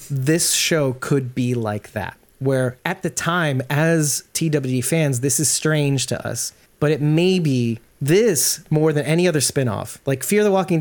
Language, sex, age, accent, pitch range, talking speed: English, male, 30-49, American, 125-155 Hz, 180 wpm